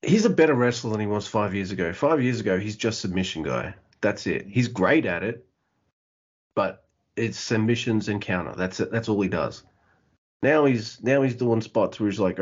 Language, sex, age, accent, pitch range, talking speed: English, male, 30-49, Australian, 95-115 Hz, 210 wpm